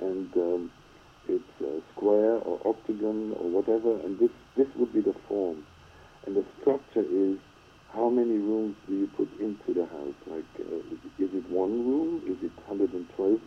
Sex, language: male, English